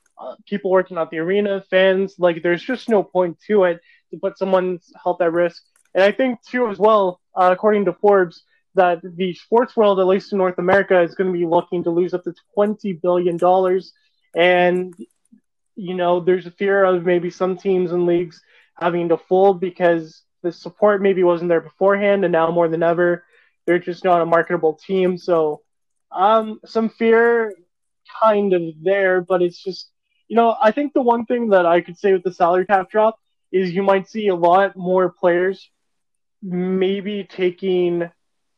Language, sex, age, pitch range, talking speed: English, male, 20-39, 170-195 Hz, 185 wpm